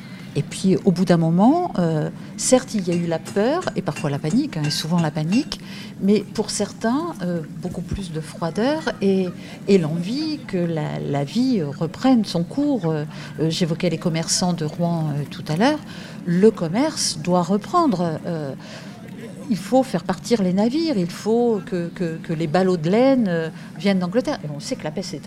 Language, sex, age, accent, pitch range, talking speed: French, female, 50-69, French, 160-205 Hz, 190 wpm